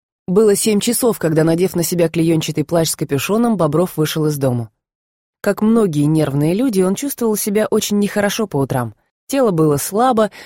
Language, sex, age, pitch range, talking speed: Russian, female, 20-39, 155-205 Hz, 165 wpm